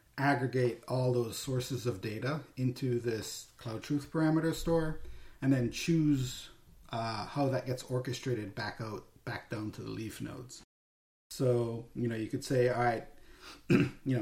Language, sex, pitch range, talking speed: English, male, 115-130 Hz, 155 wpm